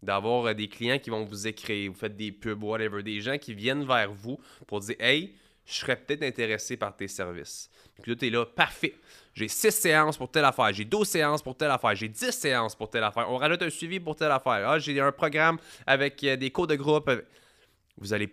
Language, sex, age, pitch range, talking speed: French, male, 20-39, 105-130 Hz, 230 wpm